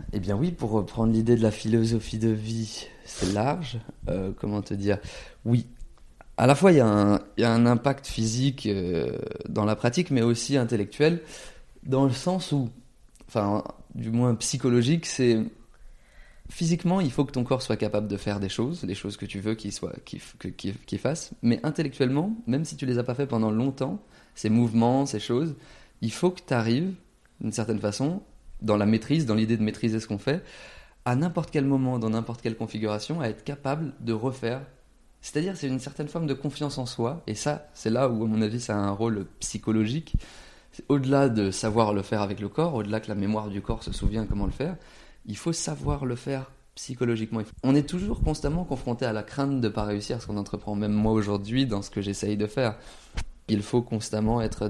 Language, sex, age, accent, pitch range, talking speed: French, male, 30-49, French, 105-135 Hz, 210 wpm